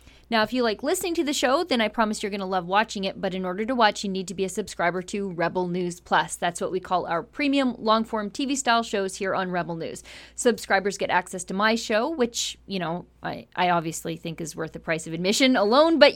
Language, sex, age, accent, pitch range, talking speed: English, female, 30-49, American, 185-255 Hz, 245 wpm